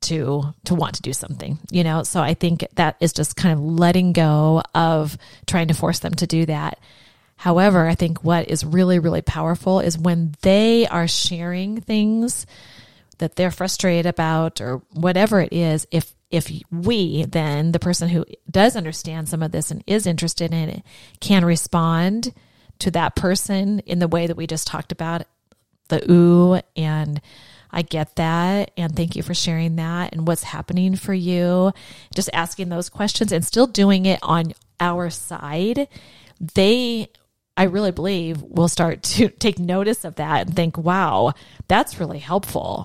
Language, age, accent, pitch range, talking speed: English, 30-49, American, 160-185 Hz, 170 wpm